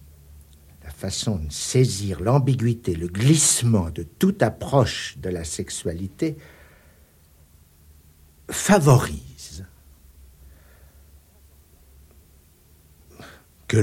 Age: 60-79